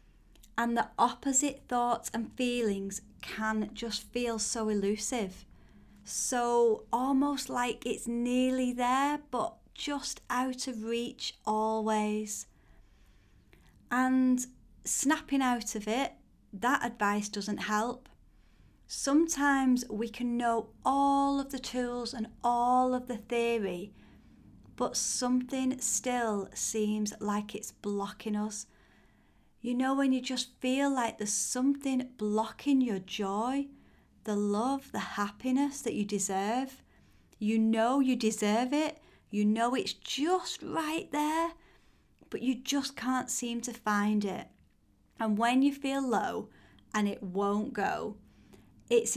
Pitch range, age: 210-260 Hz, 30-49